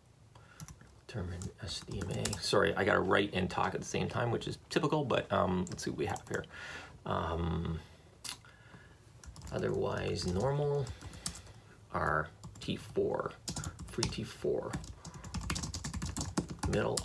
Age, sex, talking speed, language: 30-49, male, 105 wpm, English